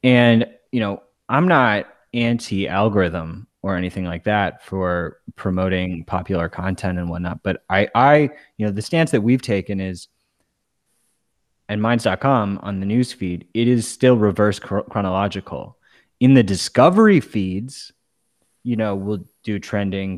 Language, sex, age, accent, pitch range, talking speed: English, male, 20-39, American, 100-125 Hz, 135 wpm